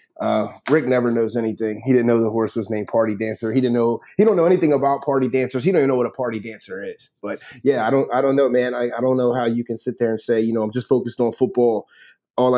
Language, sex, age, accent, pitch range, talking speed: English, male, 30-49, American, 110-130 Hz, 285 wpm